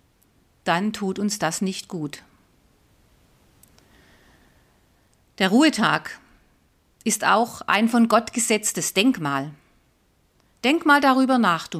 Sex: female